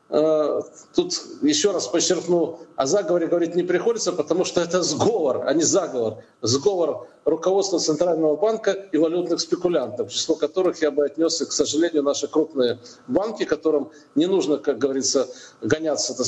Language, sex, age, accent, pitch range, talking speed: Russian, male, 50-69, native, 140-180 Hz, 145 wpm